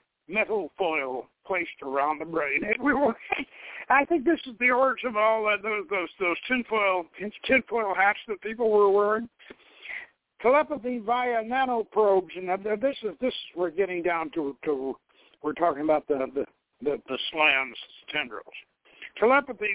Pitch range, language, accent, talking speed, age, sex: 170-225 Hz, English, American, 155 wpm, 60-79, male